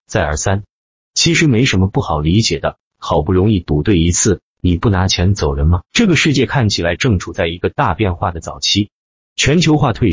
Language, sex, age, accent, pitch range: Chinese, male, 30-49, native, 85-120 Hz